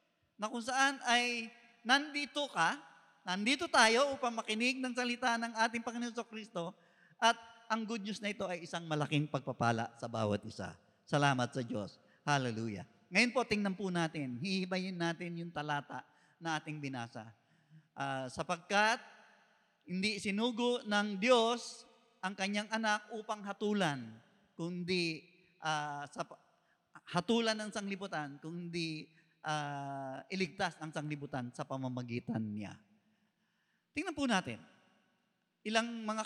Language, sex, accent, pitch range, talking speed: Filipino, male, native, 170-255 Hz, 125 wpm